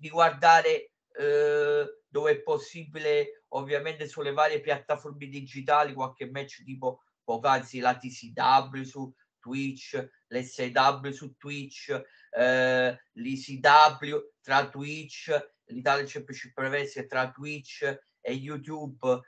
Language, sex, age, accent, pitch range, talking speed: Italian, male, 30-49, native, 130-155 Hz, 105 wpm